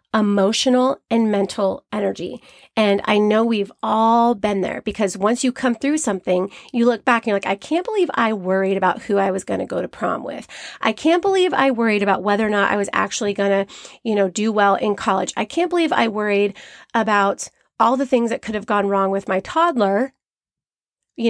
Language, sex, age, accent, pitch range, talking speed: English, female, 30-49, American, 200-260 Hz, 210 wpm